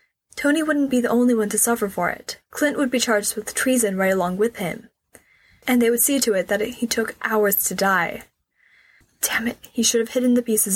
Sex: female